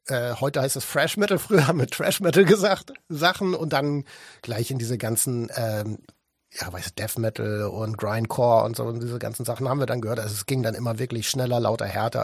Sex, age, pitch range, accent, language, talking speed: male, 60-79, 120-160 Hz, German, German, 220 wpm